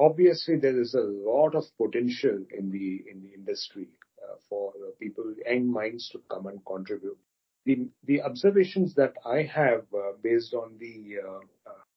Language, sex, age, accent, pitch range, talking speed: English, male, 40-59, Indian, 120-170 Hz, 170 wpm